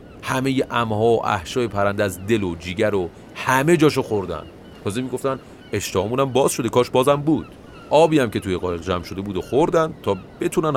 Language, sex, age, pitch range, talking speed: Persian, male, 30-49, 95-125 Hz, 185 wpm